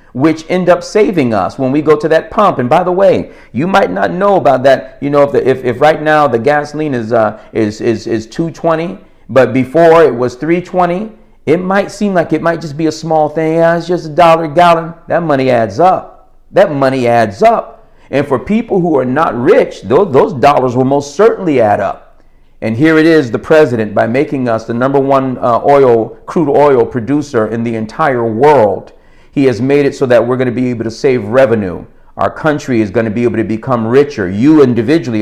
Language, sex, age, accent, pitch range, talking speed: English, male, 50-69, American, 120-165 Hz, 220 wpm